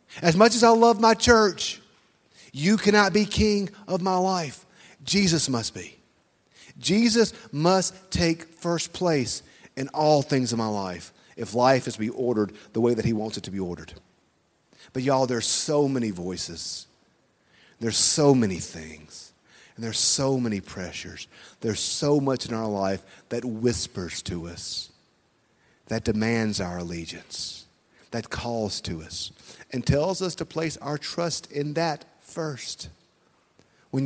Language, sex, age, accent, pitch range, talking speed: English, male, 40-59, American, 100-160 Hz, 155 wpm